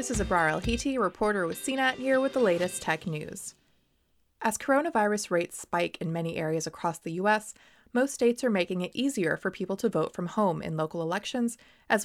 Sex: female